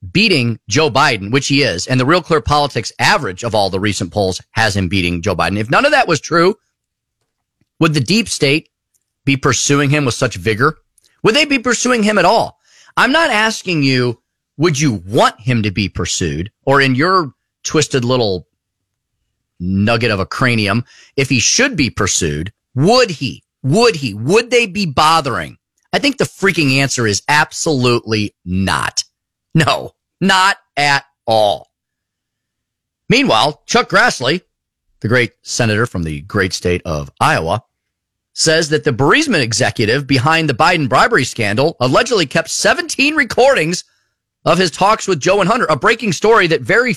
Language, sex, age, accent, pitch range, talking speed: English, male, 30-49, American, 105-165 Hz, 165 wpm